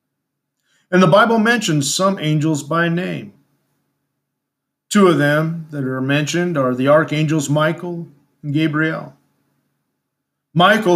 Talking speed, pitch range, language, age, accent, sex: 115 wpm, 135-165 Hz, English, 50-69, American, male